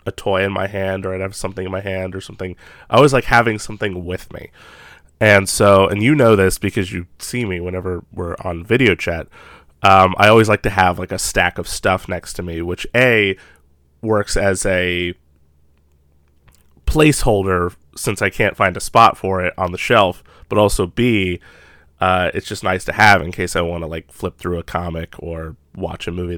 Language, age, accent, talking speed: English, 20-39, American, 205 wpm